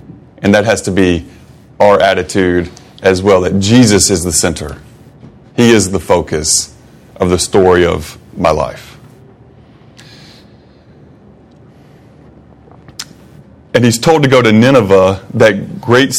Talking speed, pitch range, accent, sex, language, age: 120 wpm, 95-120 Hz, American, male, English, 30-49